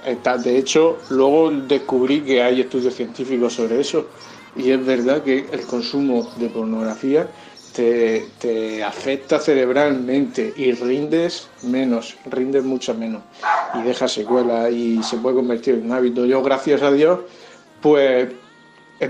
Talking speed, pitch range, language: 140 wpm, 120-135 Hz, Spanish